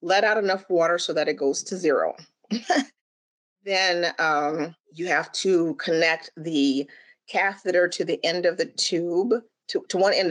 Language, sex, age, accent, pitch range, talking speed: English, female, 40-59, American, 155-220 Hz, 165 wpm